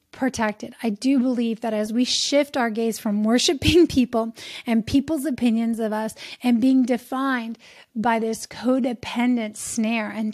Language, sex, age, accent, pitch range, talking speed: English, female, 40-59, American, 215-245 Hz, 150 wpm